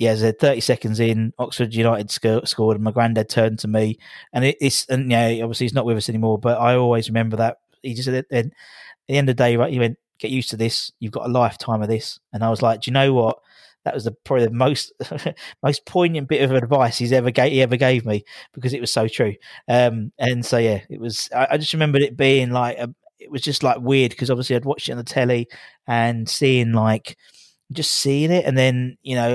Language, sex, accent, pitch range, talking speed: English, male, British, 115-135 Hz, 260 wpm